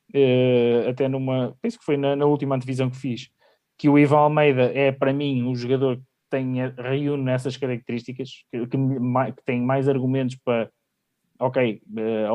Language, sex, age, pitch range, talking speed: Portuguese, male, 20-39, 130-150 Hz, 180 wpm